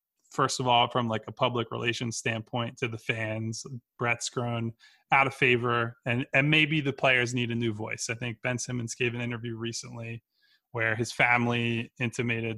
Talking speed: 180 wpm